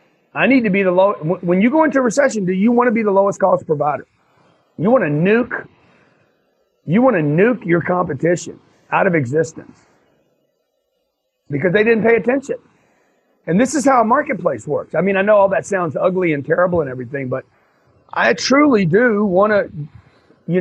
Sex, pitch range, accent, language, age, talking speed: male, 160-240 Hz, American, English, 40-59, 190 wpm